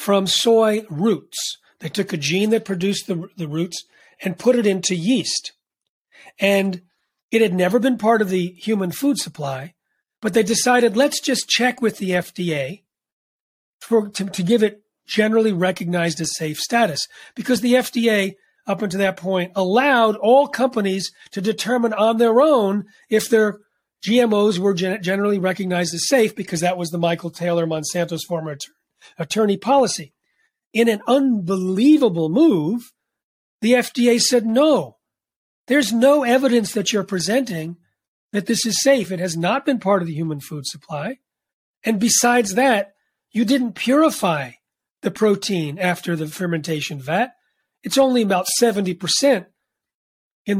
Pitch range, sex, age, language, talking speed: 180-235 Hz, male, 40-59, English, 150 wpm